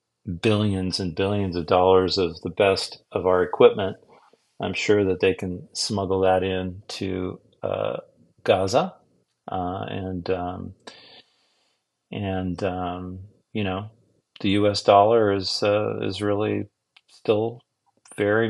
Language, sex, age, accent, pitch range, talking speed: English, male, 40-59, American, 95-105 Hz, 125 wpm